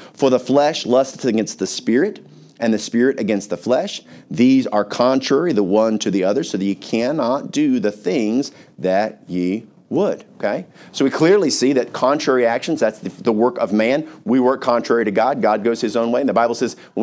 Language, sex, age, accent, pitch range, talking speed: English, male, 50-69, American, 120-150 Hz, 210 wpm